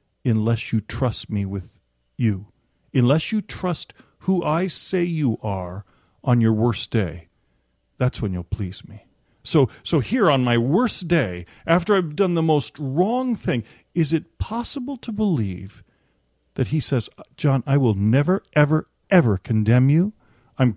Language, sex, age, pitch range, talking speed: English, male, 40-59, 115-190 Hz, 155 wpm